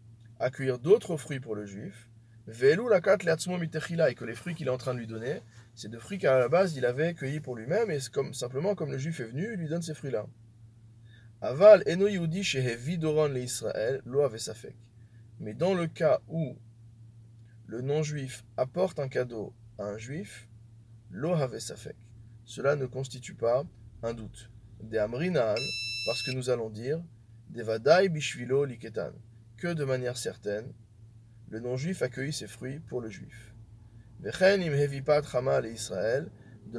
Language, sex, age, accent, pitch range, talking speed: French, male, 20-39, French, 115-140 Hz, 130 wpm